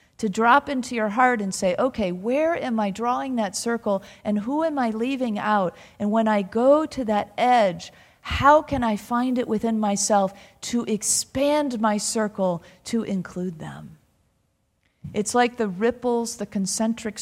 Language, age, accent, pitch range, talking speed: English, 40-59, American, 190-235 Hz, 165 wpm